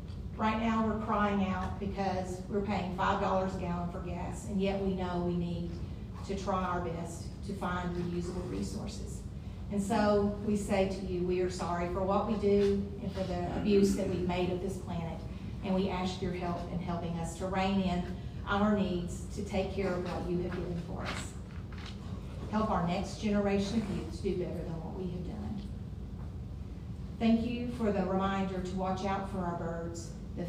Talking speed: 195 wpm